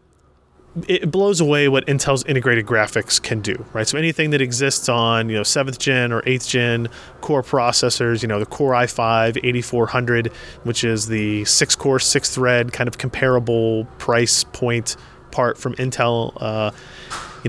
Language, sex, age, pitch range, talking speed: English, male, 30-49, 115-135 Hz, 150 wpm